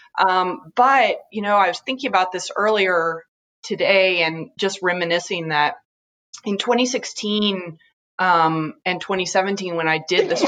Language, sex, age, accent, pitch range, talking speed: English, female, 30-49, American, 165-200 Hz, 135 wpm